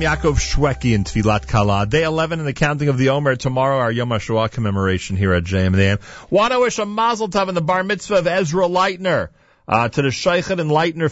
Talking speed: 230 wpm